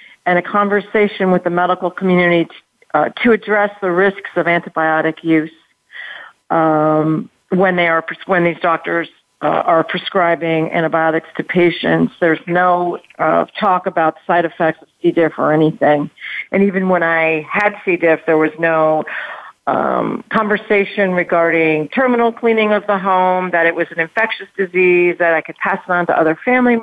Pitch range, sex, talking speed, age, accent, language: 165-205 Hz, female, 165 wpm, 50-69, American, English